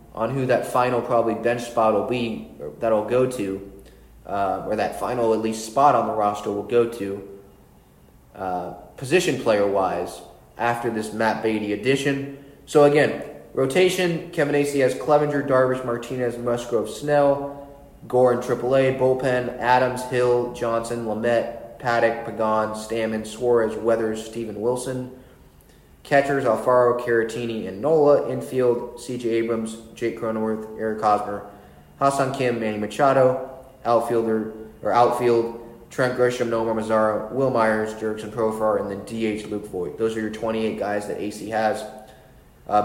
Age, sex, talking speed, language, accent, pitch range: 20-39, male, 145 wpm, English, American, 110-130 Hz